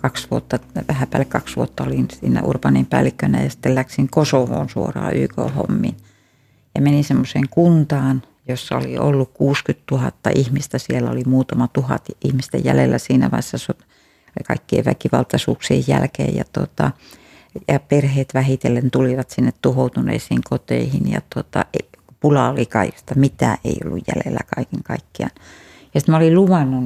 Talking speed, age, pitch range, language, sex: 135 wpm, 60-79, 115-140 Hz, Finnish, female